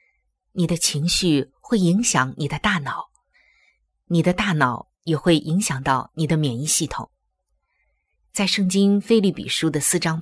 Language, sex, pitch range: Chinese, female, 145-215 Hz